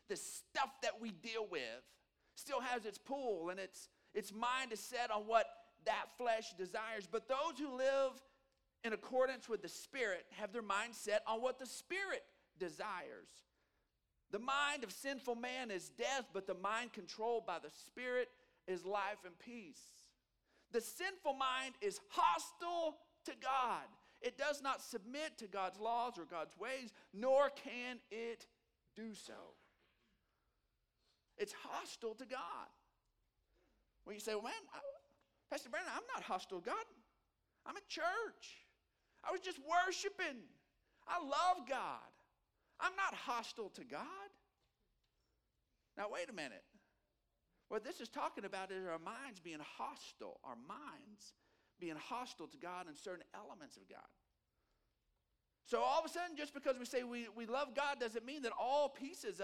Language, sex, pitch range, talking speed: English, male, 215-285 Hz, 155 wpm